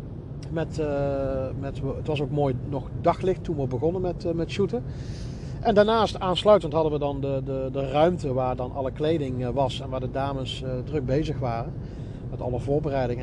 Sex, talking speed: male, 175 wpm